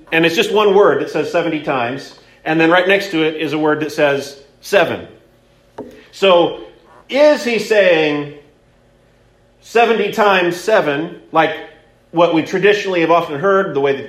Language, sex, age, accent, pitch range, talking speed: English, male, 40-59, American, 160-220 Hz, 160 wpm